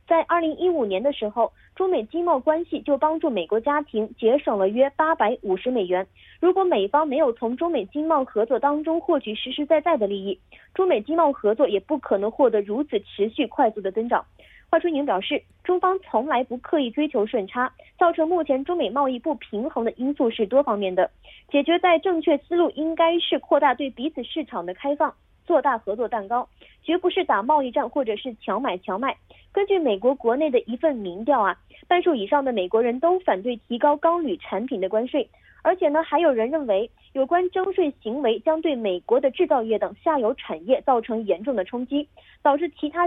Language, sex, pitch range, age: Korean, female, 225-325 Hz, 20-39